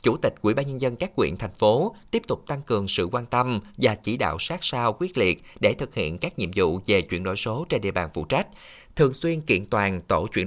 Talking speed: 260 wpm